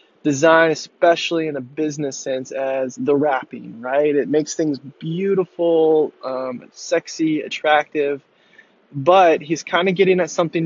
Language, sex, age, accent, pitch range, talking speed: English, male, 20-39, American, 135-170 Hz, 135 wpm